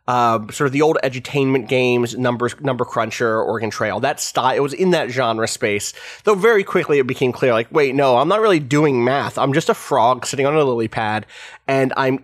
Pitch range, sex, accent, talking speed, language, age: 125-175 Hz, male, American, 220 wpm, English, 30-49